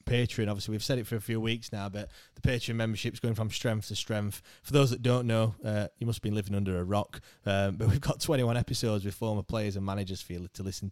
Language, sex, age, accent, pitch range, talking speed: English, male, 20-39, British, 100-115 Hz, 265 wpm